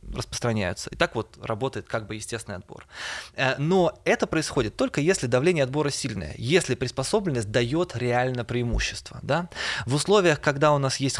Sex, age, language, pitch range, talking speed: male, 20-39, Russian, 115-150 Hz, 150 wpm